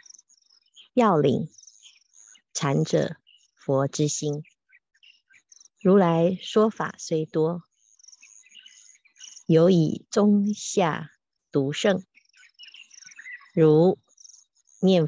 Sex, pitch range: female, 155-220 Hz